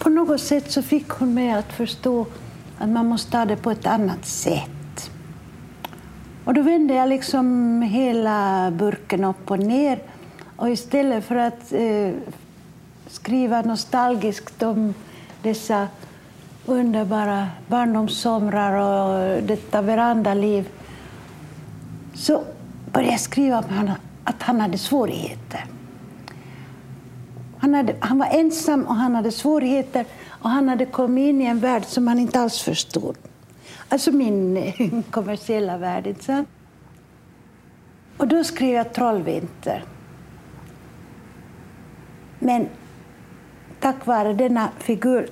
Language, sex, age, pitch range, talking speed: English, female, 60-79, 200-255 Hz, 115 wpm